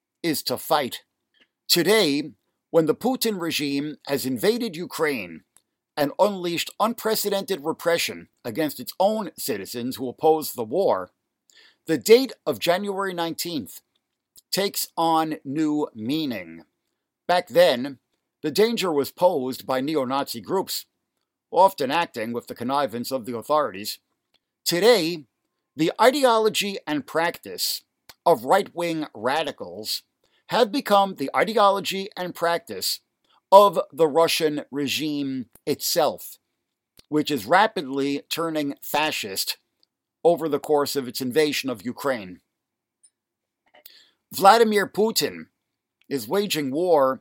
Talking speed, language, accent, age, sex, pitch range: 110 wpm, English, American, 50-69, male, 140-195 Hz